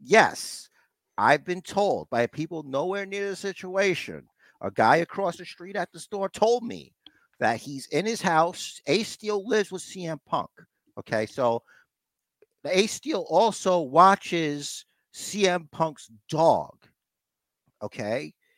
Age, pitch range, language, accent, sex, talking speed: 50-69, 130-190 Hz, English, American, male, 135 wpm